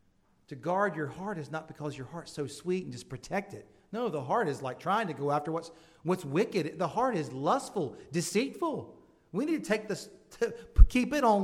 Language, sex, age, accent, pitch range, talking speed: English, male, 40-59, American, 125-175 Hz, 215 wpm